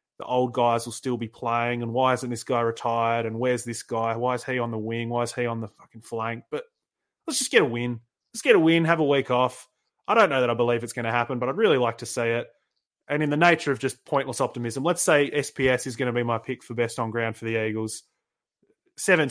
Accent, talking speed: Australian, 265 wpm